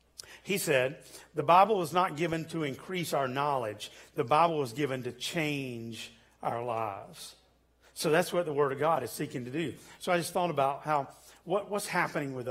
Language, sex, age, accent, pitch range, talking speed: English, male, 50-69, American, 130-170 Hz, 190 wpm